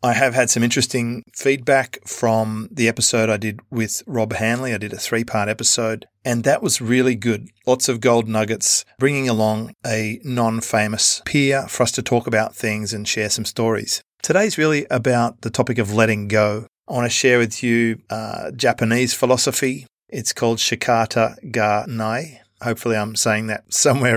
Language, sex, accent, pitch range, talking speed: English, male, Australian, 110-125 Hz, 175 wpm